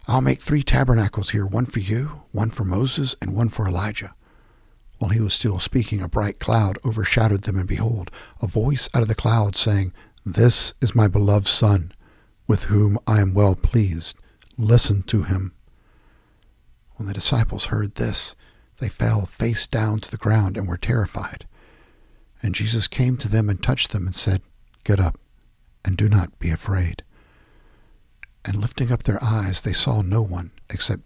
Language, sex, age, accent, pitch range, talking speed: English, male, 60-79, American, 95-110 Hz, 175 wpm